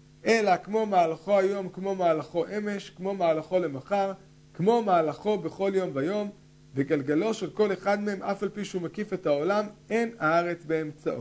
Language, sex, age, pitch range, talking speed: Hebrew, male, 50-69, 150-195 Hz, 160 wpm